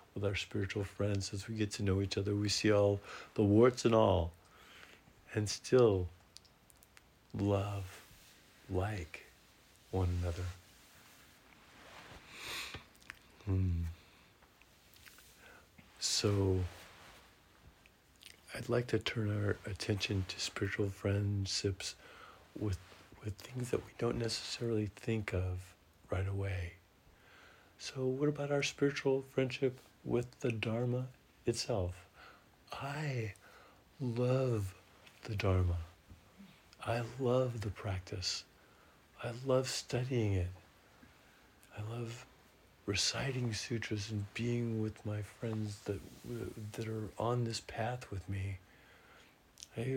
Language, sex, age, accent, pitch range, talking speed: English, male, 50-69, American, 95-120 Hz, 105 wpm